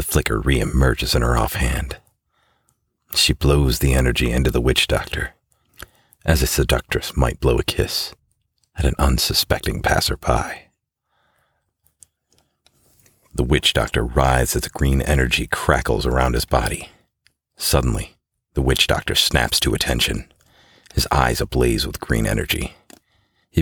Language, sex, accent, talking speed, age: English, male, American, 130 wpm, 40-59